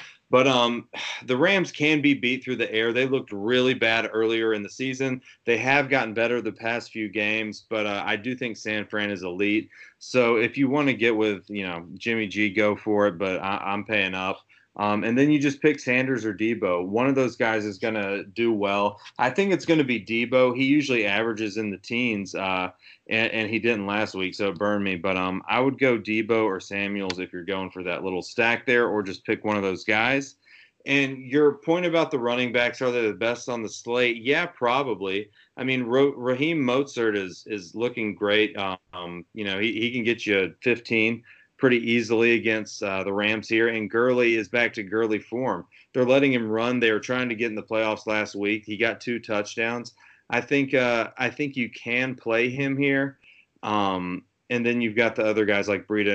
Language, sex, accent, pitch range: English, male, American, 100-125 Hz